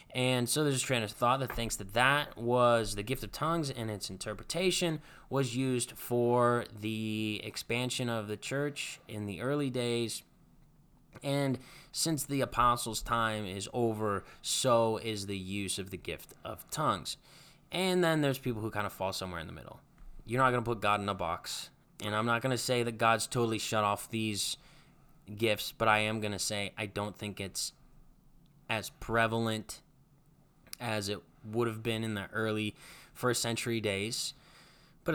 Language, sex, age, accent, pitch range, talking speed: English, male, 20-39, American, 105-130 Hz, 180 wpm